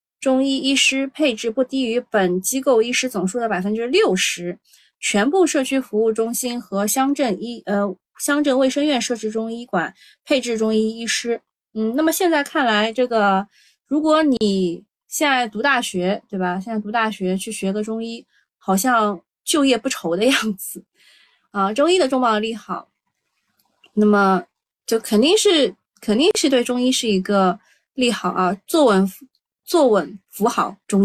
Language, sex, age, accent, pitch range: Chinese, female, 20-39, native, 200-270 Hz